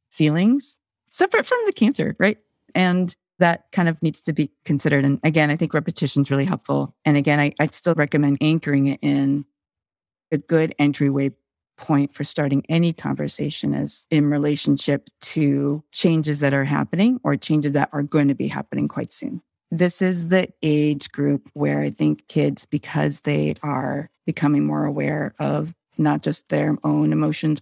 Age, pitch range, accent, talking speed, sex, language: 40-59, 140-160 Hz, American, 170 wpm, female, English